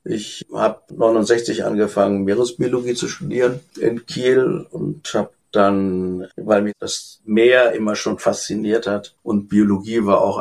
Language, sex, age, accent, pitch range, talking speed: German, male, 60-79, German, 95-120 Hz, 140 wpm